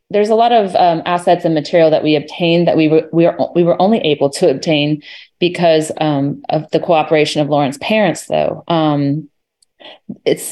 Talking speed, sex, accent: 175 wpm, female, American